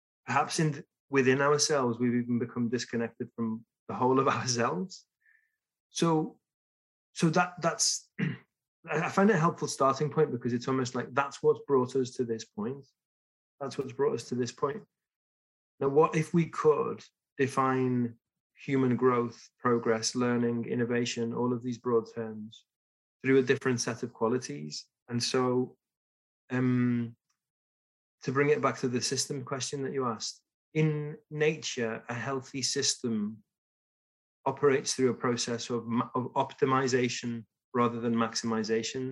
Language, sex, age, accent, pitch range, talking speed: English, male, 20-39, British, 120-135 Hz, 145 wpm